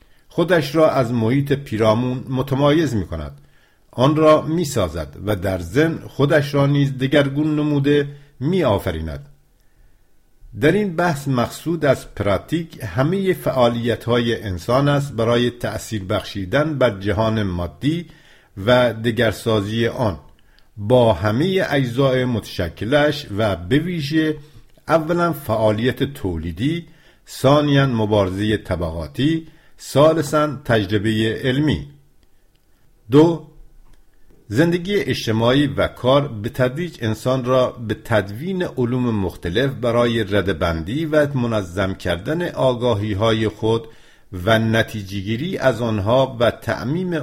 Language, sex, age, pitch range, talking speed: English, male, 50-69, 105-145 Hz, 105 wpm